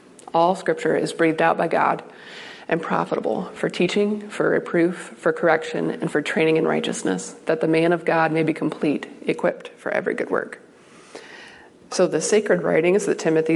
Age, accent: 30-49, American